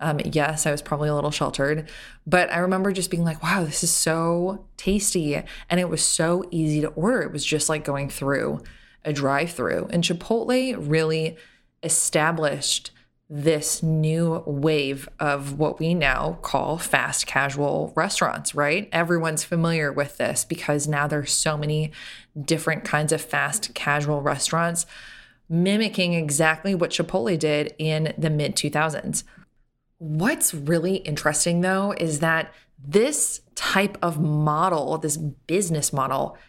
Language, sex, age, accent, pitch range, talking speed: English, female, 20-39, American, 150-185 Hz, 145 wpm